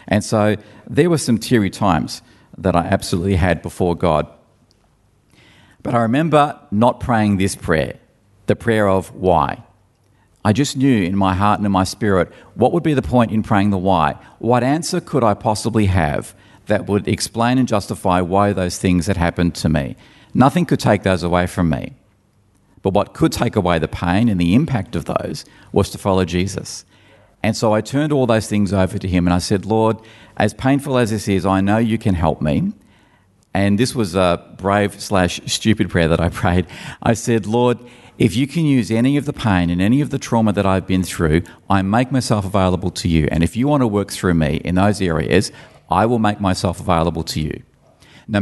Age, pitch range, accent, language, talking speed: 50-69, 90-115 Hz, Australian, English, 205 wpm